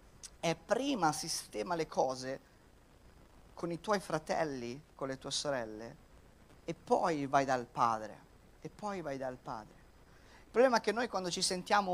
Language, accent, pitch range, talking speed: Italian, native, 125-165 Hz, 155 wpm